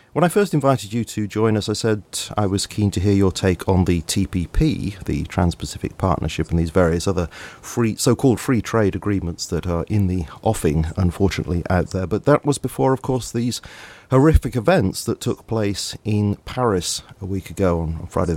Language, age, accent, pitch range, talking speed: English, 40-59, British, 95-125 Hz, 190 wpm